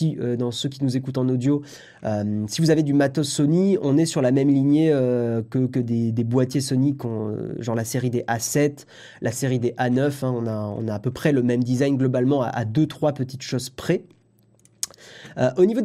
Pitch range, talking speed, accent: 130-180 Hz, 225 wpm, French